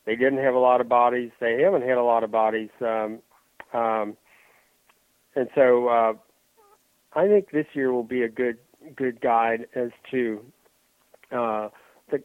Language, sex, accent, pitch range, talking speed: English, male, American, 115-125 Hz, 155 wpm